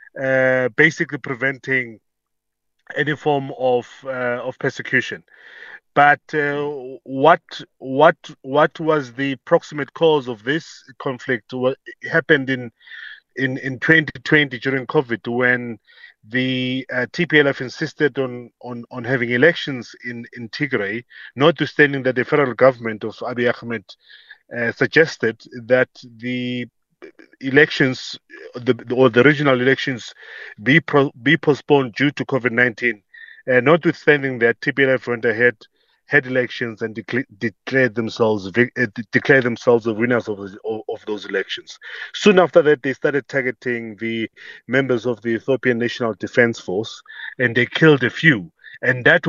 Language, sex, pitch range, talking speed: English, male, 120-145 Hz, 125 wpm